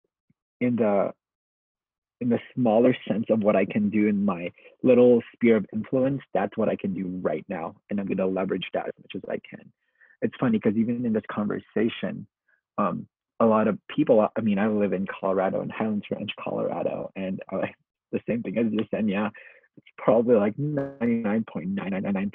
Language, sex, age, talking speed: English, male, 30-49, 190 wpm